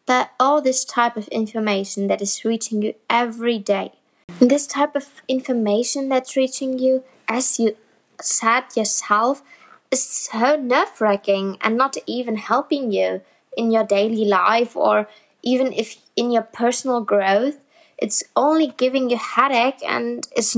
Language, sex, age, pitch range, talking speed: English, female, 20-39, 210-255 Hz, 145 wpm